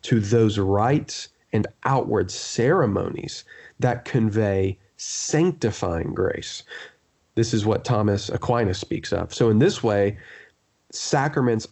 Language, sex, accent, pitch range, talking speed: English, male, American, 105-135 Hz, 115 wpm